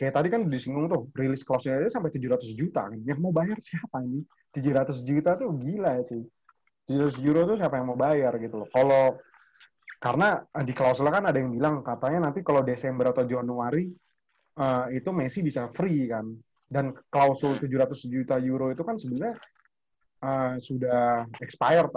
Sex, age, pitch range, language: male, 30-49, 120-150 Hz, Indonesian